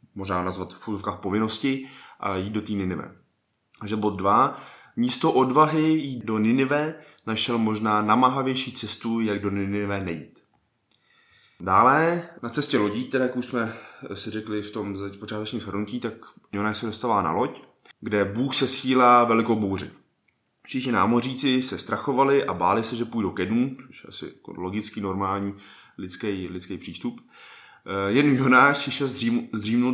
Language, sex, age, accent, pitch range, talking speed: Czech, male, 20-39, native, 95-120 Hz, 150 wpm